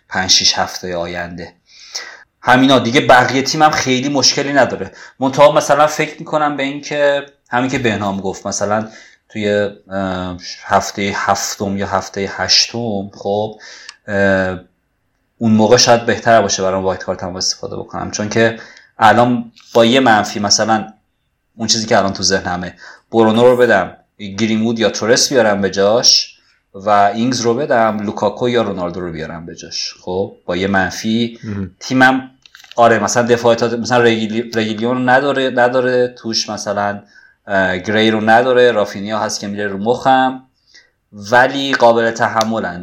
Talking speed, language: 140 wpm, Persian